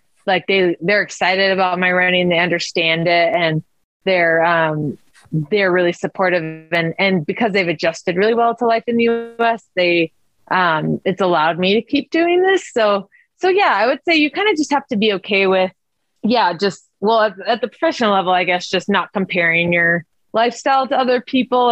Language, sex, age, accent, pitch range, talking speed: English, female, 20-39, American, 175-215 Hz, 195 wpm